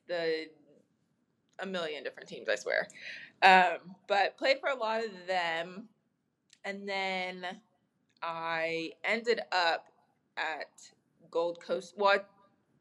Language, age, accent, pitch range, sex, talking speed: English, 20-39, American, 170-205 Hz, female, 115 wpm